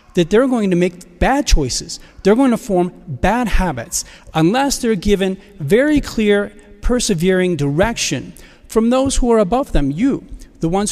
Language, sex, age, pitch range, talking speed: English, male, 40-59, 165-220 Hz, 160 wpm